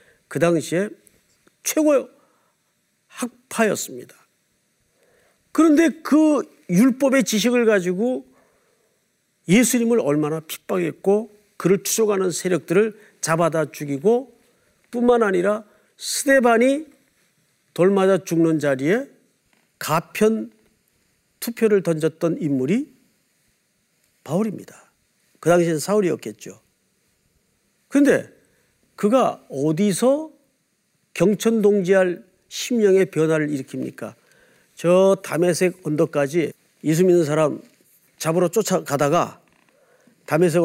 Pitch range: 165-235 Hz